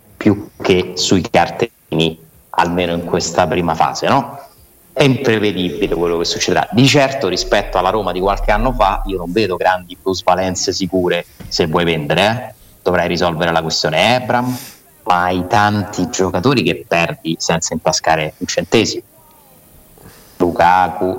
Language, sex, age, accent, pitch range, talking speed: Italian, male, 30-49, native, 90-100 Hz, 140 wpm